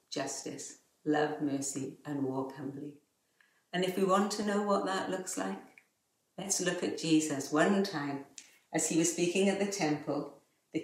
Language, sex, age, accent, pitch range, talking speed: English, female, 60-79, British, 145-180 Hz, 165 wpm